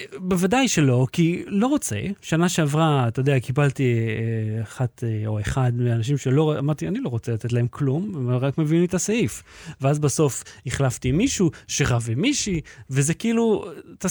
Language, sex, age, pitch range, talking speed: Hebrew, male, 30-49, 130-185 Hz, 165 wpm